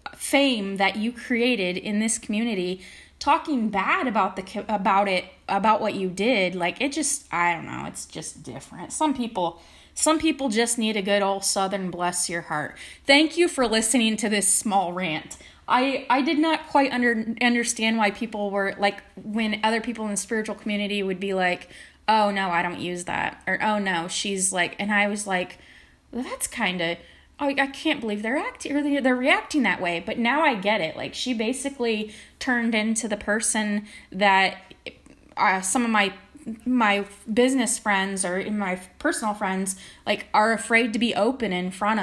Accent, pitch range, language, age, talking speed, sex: American, 195-240 Hz, English, 20-39, 185 wpm, female